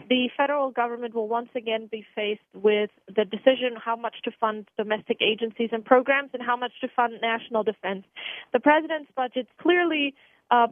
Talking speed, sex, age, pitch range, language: 175 wpm, female, 30-49, 225-265 Hz, English